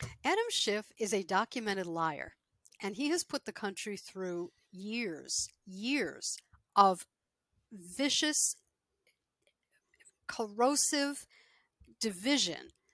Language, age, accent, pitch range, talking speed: English, 50-69, American, 200-265 Hz, 90 wpm